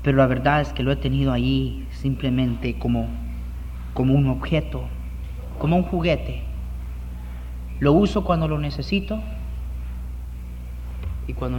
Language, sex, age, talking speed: Spanish, male, 30-49, 125 wpm